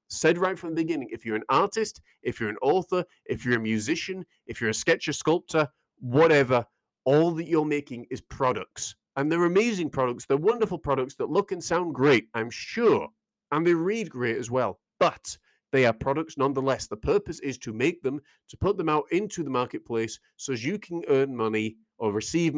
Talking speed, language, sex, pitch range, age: 200 wpm, English, male, 120-180 Hz, 40-59